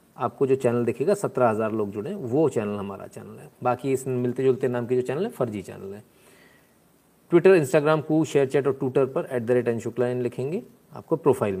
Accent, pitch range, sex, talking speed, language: native, 115-145 Hz, male, 210 wpm, Hindi